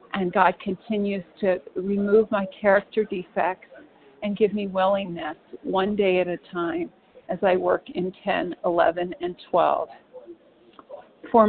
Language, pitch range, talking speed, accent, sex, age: English, 185-215 Hz, 135 wpm, American, female, 50-69